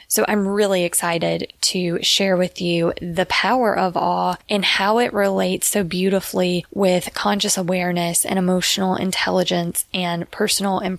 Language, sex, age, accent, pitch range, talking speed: English, female, 20-39, American, 175-200 Hz, 150 wpm